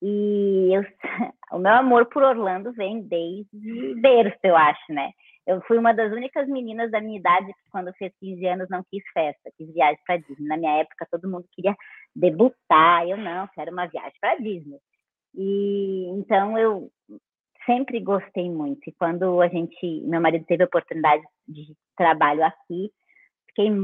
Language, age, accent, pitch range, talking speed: Portuguese, 20-39, Brazilian, 175-235 Hz, 170 wpm